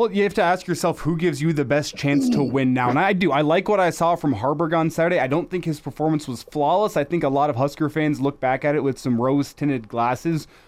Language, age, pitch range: English, 20-39, 130-165 Hz